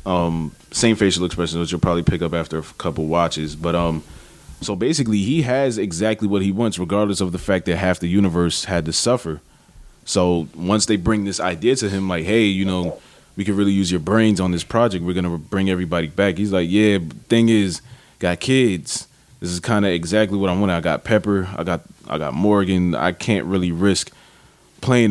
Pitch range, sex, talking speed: 85-105 Hz, male, 210 wpm